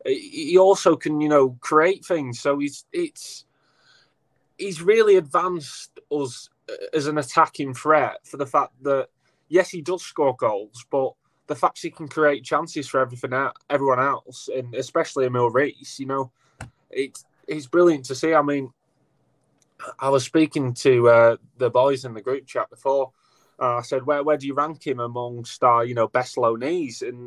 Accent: British